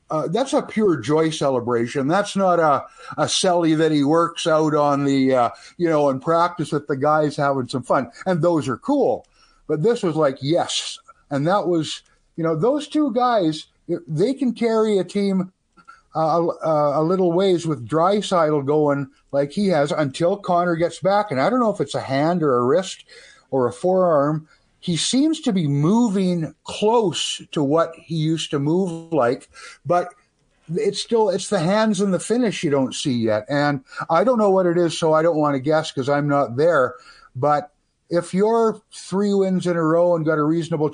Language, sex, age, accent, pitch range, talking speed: English, male, 50-69, American, 145-185 Hz, 195 wpm